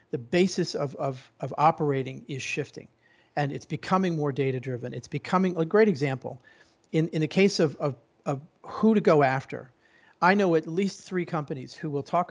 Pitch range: 140-175 Hz